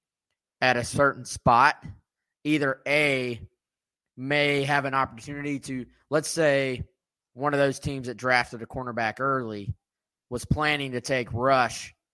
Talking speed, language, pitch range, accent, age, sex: 135 wpm, English, 120-145 Hz, American, 20-39, male